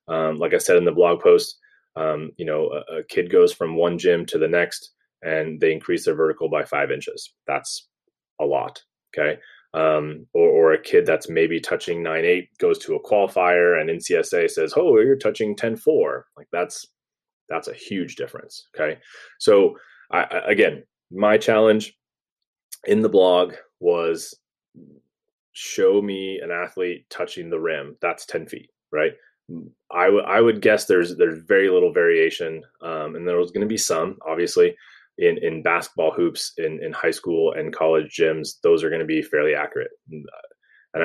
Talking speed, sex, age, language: 175 wpm, male, 30-49, English